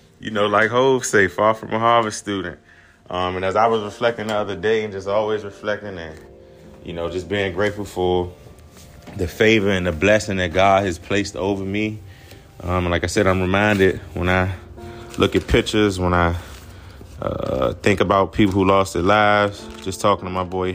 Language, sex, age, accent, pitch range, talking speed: English, male, 20-39, American, 85-100 Hz, 195 wpm